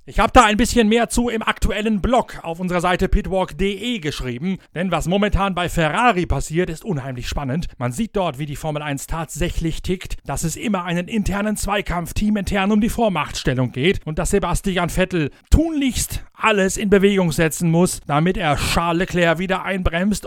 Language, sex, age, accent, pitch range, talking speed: German, male, 40-59, German, 155-205 Hz, 180 wpm